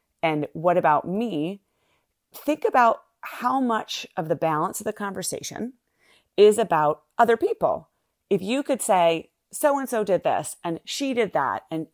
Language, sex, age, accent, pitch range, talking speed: English, female, 30-49, American, 160-235 Hz, 150 wpm